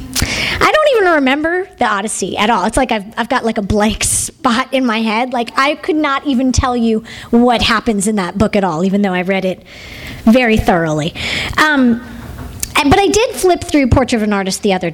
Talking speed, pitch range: 215 wpm, 215-300 Hz